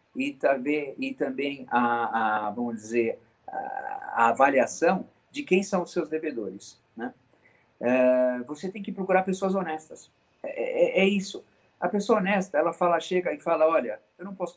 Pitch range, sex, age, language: 150-195 Hz, male, 50-69, Portuguese